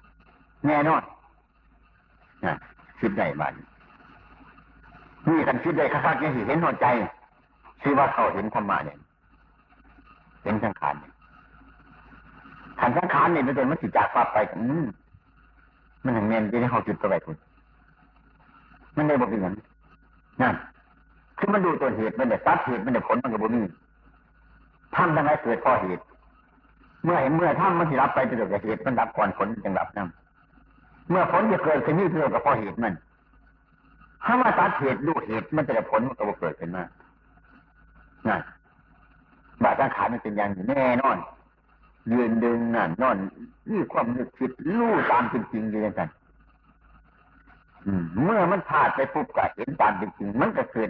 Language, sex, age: Chinese, male, 60-79